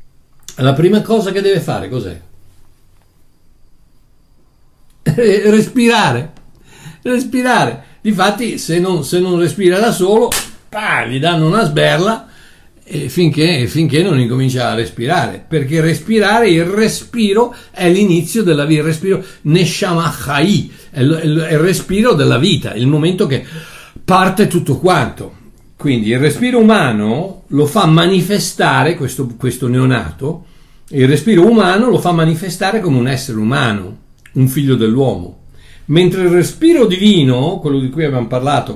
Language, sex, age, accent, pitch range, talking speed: Italian, male, 60-79, native, 130-180 Hz, 130 wpm